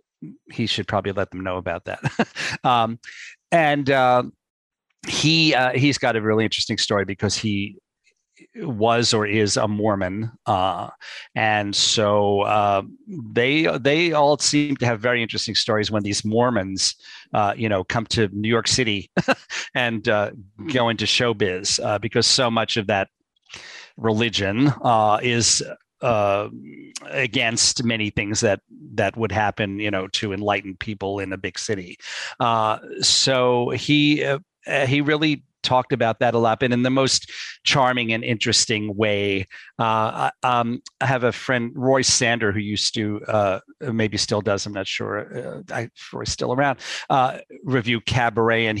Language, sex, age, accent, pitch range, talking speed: English, male, 40-59, American, 105-125 Hz, 155 wpm